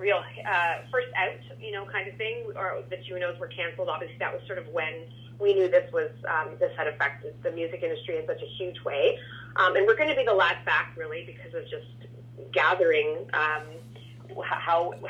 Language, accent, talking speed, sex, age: English, American, 205 wpm, female, 30-49